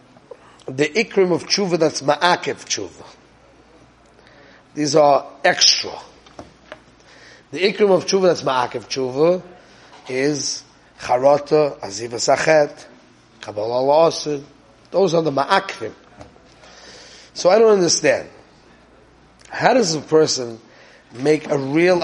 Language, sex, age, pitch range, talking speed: English, male, 30-49, 140-190 Hz, 105 wpm